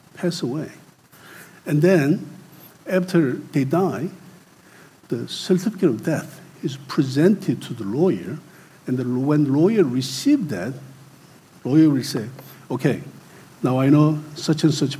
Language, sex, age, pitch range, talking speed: English, male, 60-79, 140-180 Hz, 125 wpm